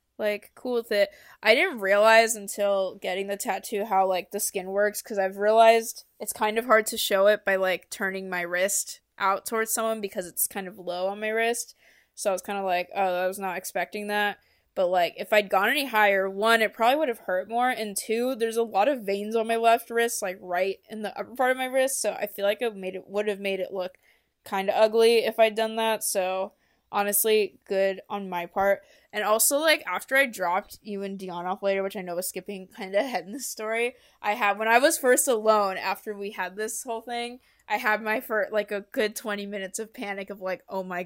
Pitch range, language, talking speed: 195-225 Hz, English, 235 wpm